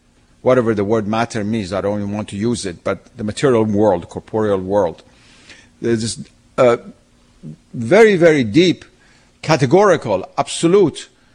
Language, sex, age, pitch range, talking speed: English, male, 50-69, 115-145 Hz, 135 wpm